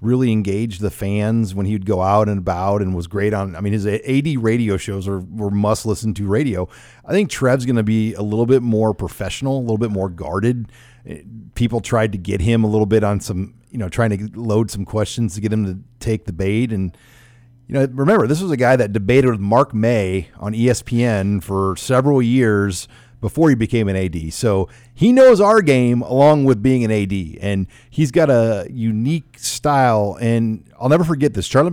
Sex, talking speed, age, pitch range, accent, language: male, 210 wpm, 40-59, 100-125 Hz, American, English